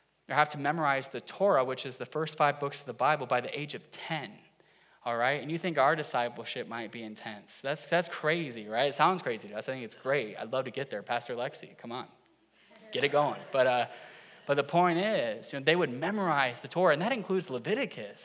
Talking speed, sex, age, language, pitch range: 235 wpm, male, 10-29, English, 135-170 Hz